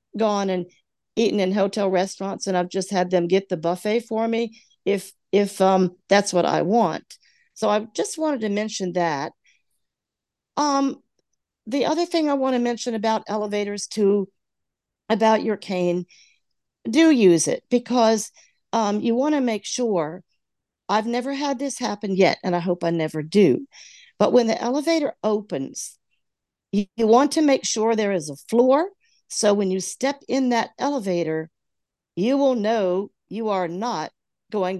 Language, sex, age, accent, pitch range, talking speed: English, female, 50-69, American, 190-240 Hz, 165 wpm